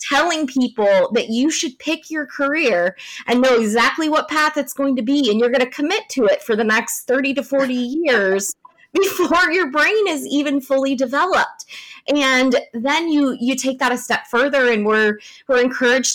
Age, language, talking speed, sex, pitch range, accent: 20-39, English, 190 wpm, female, 195-255 Hz, American